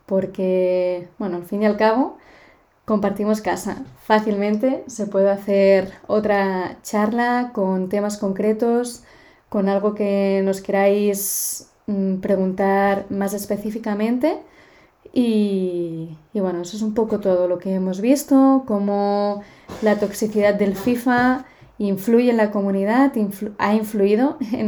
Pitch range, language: 195-220 Hz, Spanish